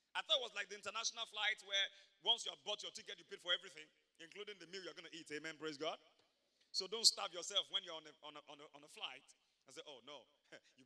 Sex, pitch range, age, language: male, 185-275 Hz, 30-49, English